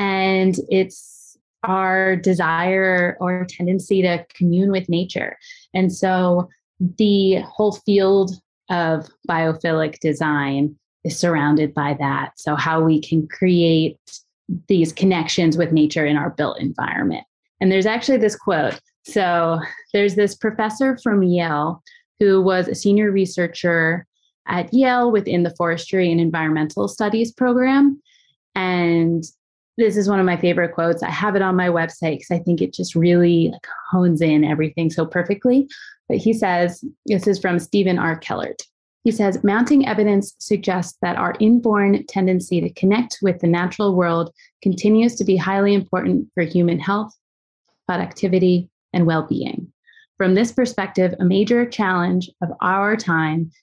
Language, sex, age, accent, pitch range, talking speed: English, female, 20-39, American, 170-205 Hz, 145 wpm